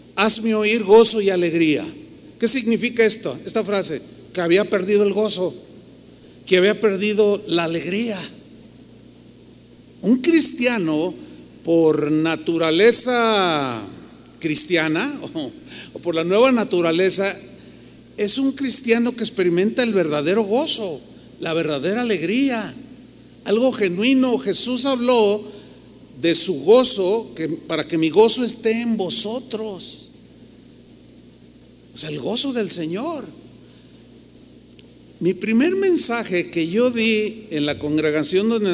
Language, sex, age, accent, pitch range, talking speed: Spanish, male, 40-59, Mexican, 165-230 Hz, 110 wpm